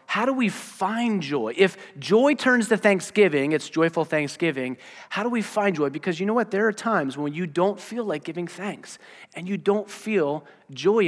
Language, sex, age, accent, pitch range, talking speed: English, male, 30-49, American, 135-200 Hz, 200 wpm